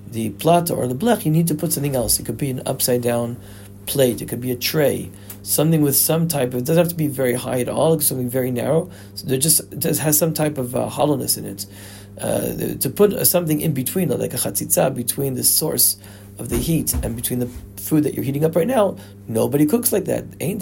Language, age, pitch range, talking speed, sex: English, 40-59, 100-155 Hz, 240 wpm, male